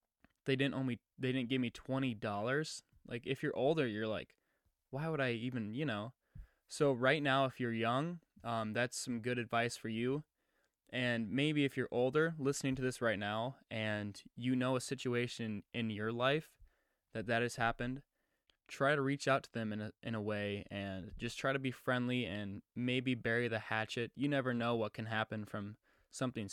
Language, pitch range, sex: English, 110-130 Hz, male